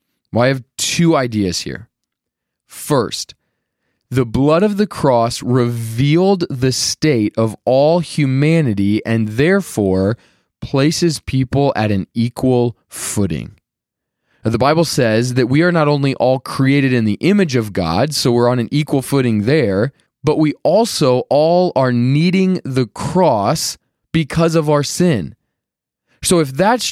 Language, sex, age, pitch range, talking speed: English, male, 20-39, 120-165 Hz, 140 wpm